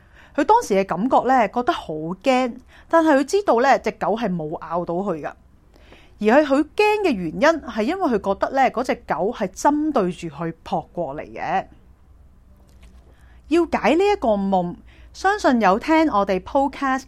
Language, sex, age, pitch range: Chinese, female, 30-49, 180-265 Hz